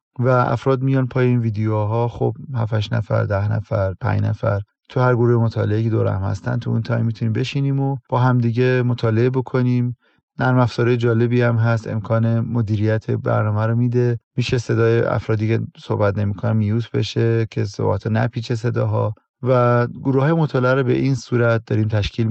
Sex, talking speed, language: male, 175 wpm, Persian